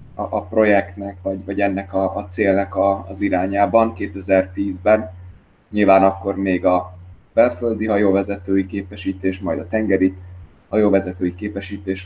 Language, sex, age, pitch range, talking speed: Hungarian, male, 20-39, 90-105 Hz, 115 wpm